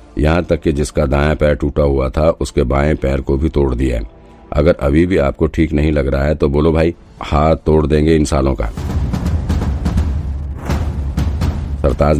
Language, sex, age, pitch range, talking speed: Hindi, male, 50-69, 70-80 Hz, 175 wpm